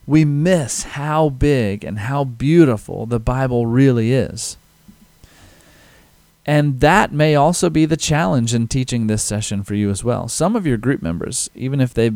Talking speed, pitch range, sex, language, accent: 170 wpm, 110-155 Hz, male, English, American